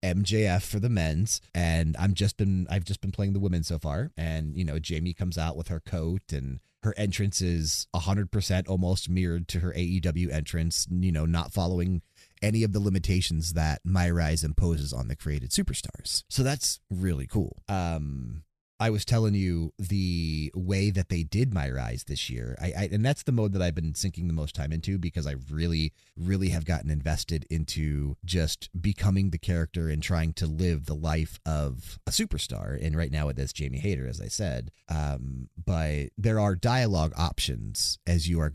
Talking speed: 195 wpm